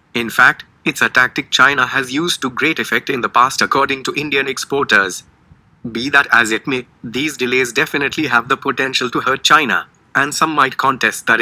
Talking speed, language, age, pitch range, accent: 195 wpm, English, 30-49, 120-140 Hz, Indian